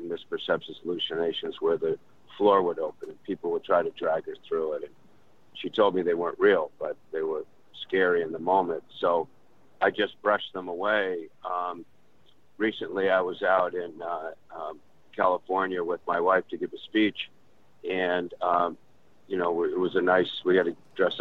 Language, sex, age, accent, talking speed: English, male, 50-69, American, 180 wpm